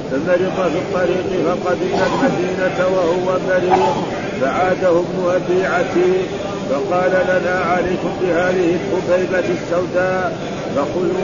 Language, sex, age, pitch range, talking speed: Arabic, male, 50-69, 180-185 Hz, 95 wpm